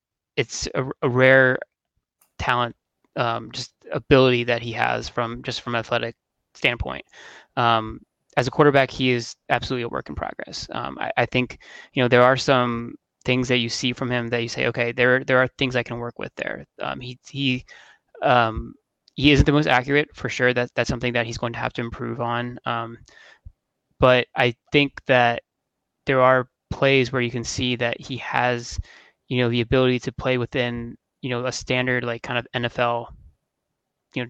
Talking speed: 190 wpm